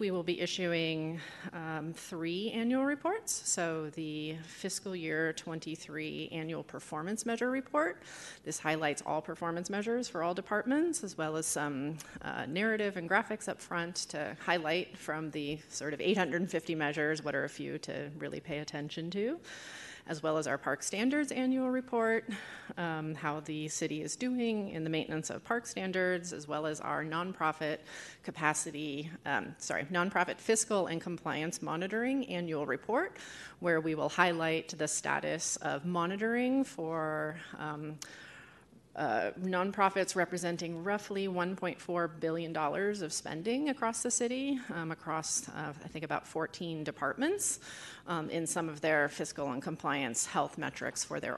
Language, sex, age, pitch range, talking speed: English, female, 30-49, 155-195 Hz, 150 wpm